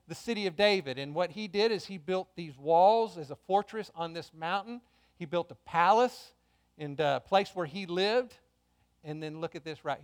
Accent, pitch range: American, 120-200 Hz